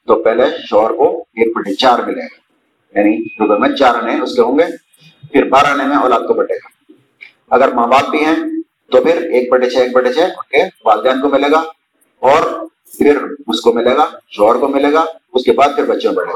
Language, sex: Urdu, male